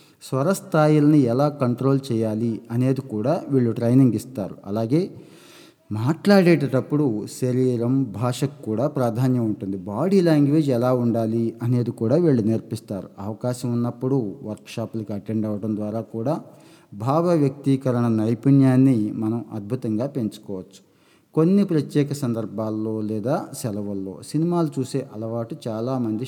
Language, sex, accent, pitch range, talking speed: Telugu, male, native, 110-140 Hz, 105 wpm